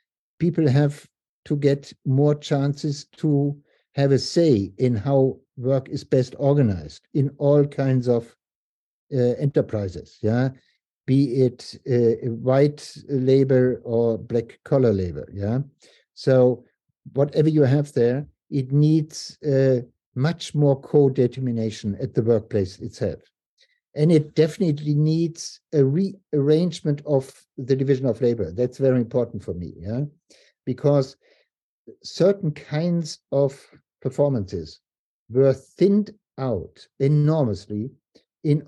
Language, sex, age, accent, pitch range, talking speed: English, male, 60-79, German, 125-150 Hz, 115 wpm